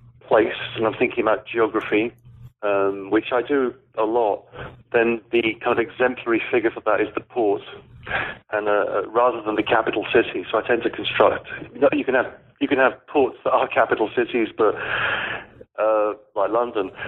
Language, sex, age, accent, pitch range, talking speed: English, male, 40-59, British, 105-155 Hz, 185 wpm